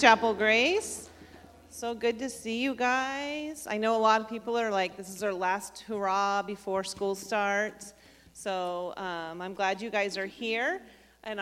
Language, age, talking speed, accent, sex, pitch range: English, 40-59, 175 wpm, American, female, 215-275 Hz